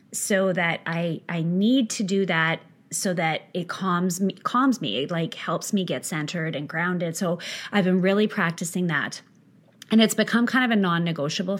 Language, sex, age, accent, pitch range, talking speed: English, female, 30-49, American, 170-215 Hz, 185 wpm